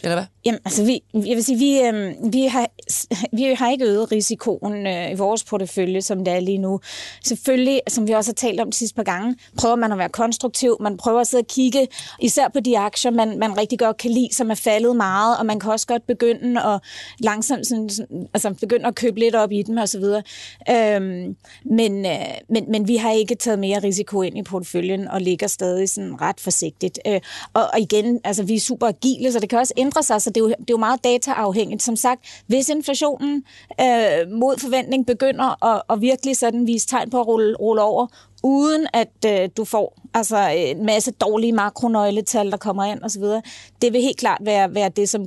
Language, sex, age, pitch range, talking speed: Danish, female, 30-49, 205-240 Hz, 205 wpm